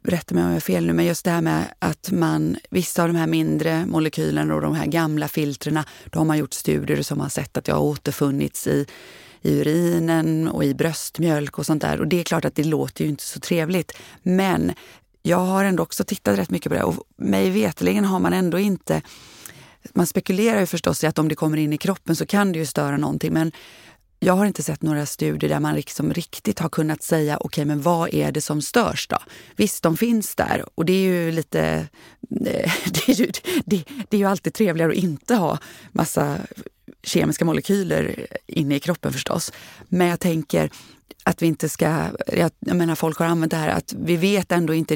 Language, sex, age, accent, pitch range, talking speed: Swedish, female, 30-49, native, 155-185 Hz, 215 wpm